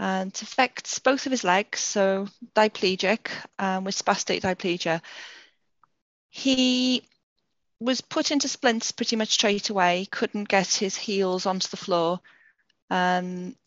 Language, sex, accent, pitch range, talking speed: English, female, British, 180-220 Hz, 130 wpm